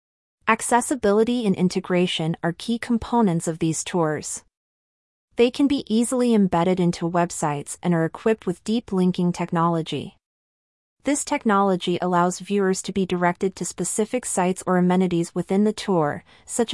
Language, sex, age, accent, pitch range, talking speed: English, female, 30-49, American, 170-210 Hz, 135 wpm